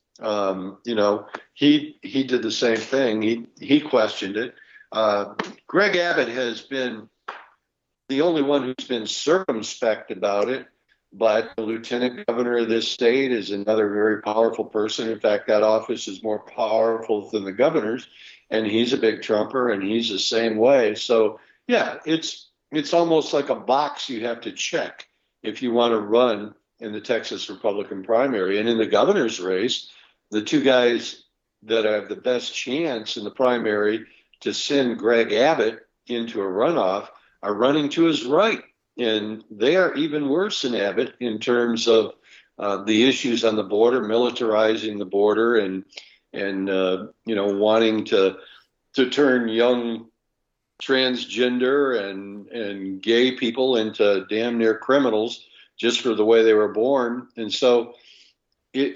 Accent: American